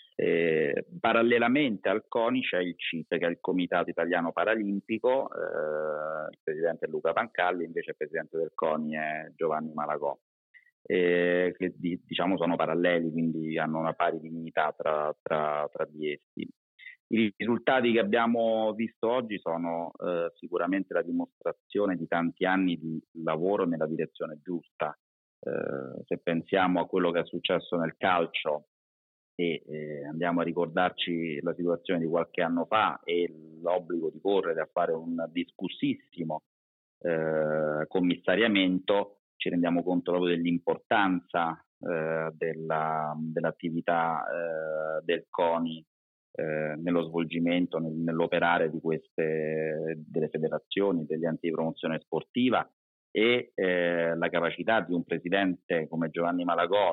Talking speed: 135 wpm